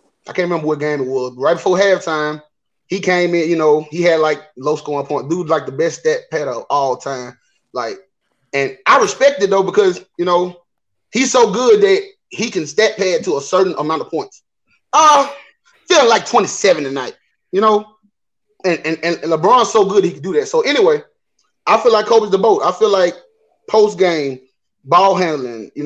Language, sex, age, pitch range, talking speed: English, male, 30-49, 150-205 Hz, 200 wpm